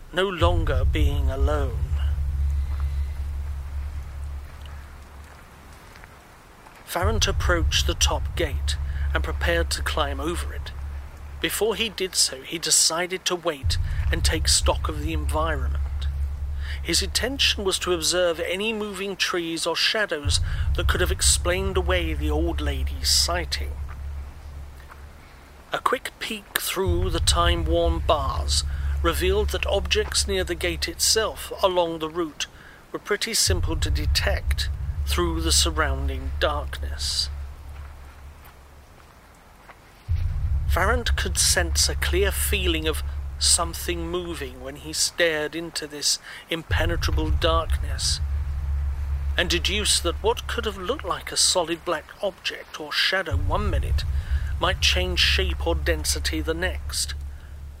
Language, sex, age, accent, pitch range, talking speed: English, male, 40-59, British, 70-85 Hz, 115 wpm